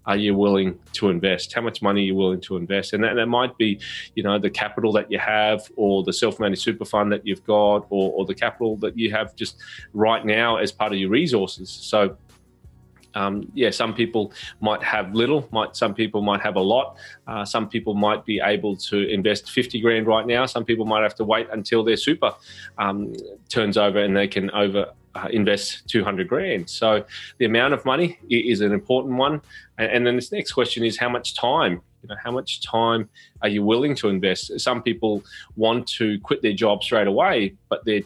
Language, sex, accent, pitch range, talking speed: English, male, Australian, 100-115 Hz, 215 wpm